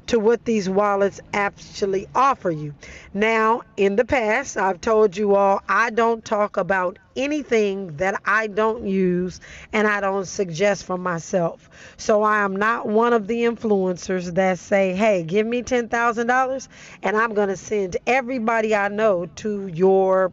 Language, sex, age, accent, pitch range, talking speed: English, female, 40-59, American, 195-235 Hz, 155 wpm